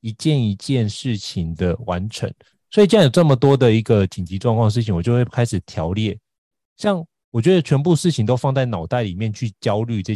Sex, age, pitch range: male, 30-49, 100-135 Hz